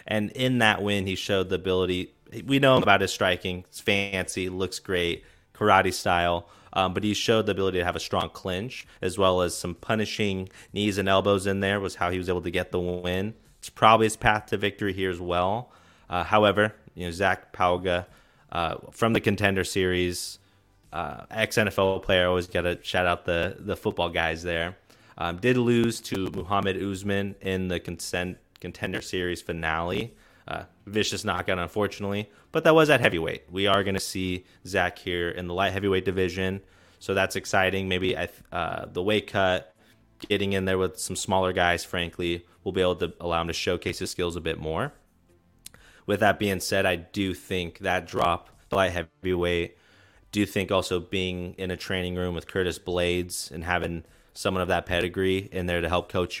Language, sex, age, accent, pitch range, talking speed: English, male, 30-49, American, 90-100 Hz, 190 wpm